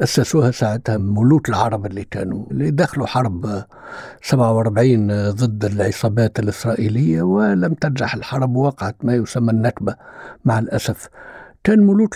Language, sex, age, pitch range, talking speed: Arabic, male, 60-79, 120-170 Hz, 120 wpm